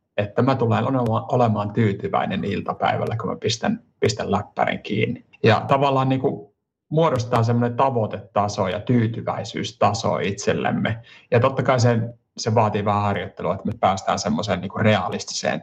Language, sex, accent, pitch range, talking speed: Finnish, male, native, 100-120 Hz, 135 wpm